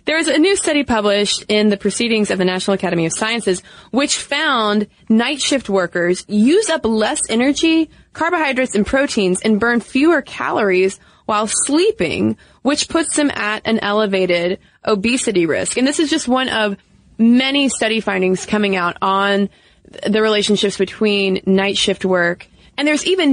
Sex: female